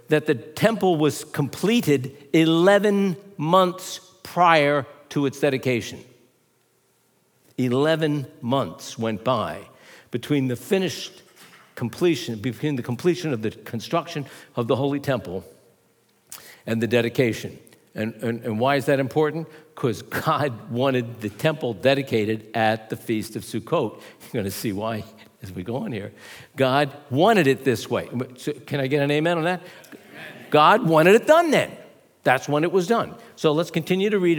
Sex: male